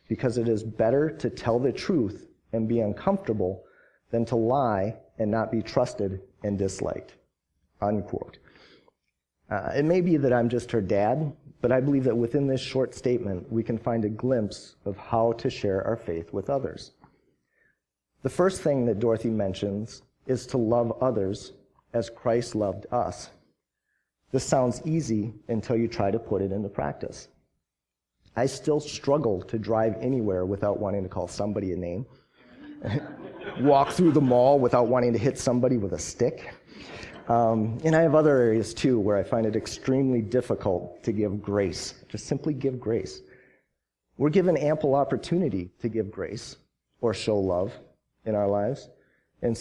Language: English